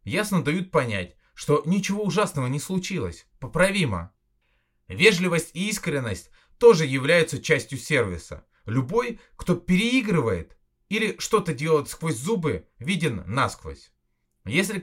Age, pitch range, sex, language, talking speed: 30-49, 115-175 Hz, male, Russian, 110 wpm